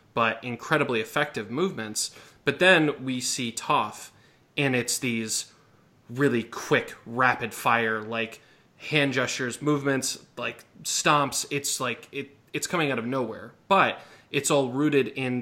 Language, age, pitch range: English, 20-39, 115-135 Hz